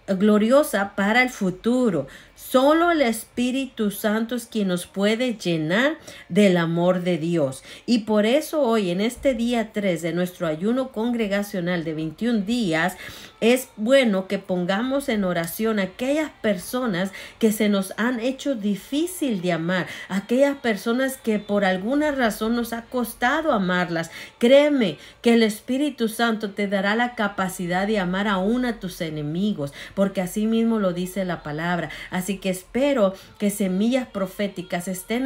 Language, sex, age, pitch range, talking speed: Spanish, female, 40-59, 190-245 Hz, 150 wpm